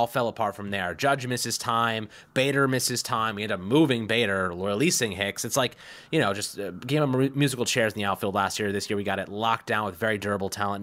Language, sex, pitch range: English, male, 115-145 Hz